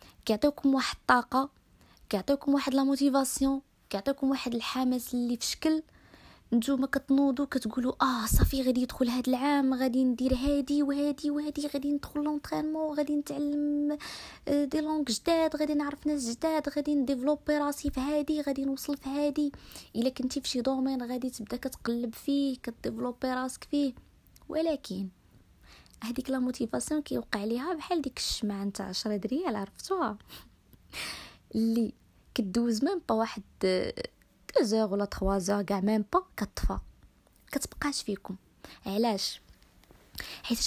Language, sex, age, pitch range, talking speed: Arabic, female, 20-39, 210-285 Hz, 130 wpm